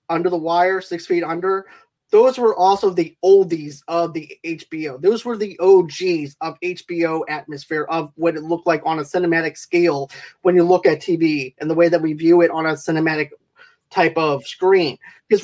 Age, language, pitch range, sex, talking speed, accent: 30-49, English, 160-190 Hz, male, 190 wpm, American